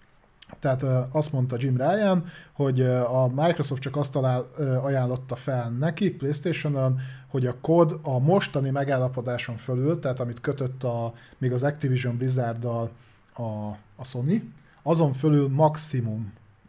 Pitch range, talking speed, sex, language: 120-140 Hz, 130 wpm, male, Hungarian